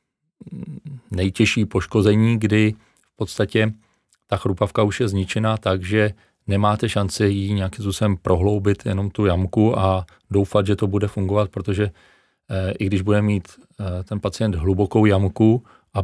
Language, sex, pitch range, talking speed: Czech, male, 95-105 Hz, 135 wpm